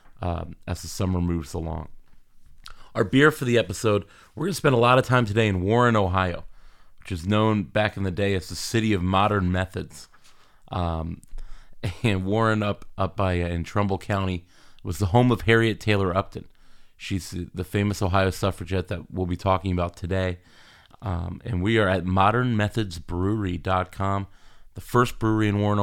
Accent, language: American, English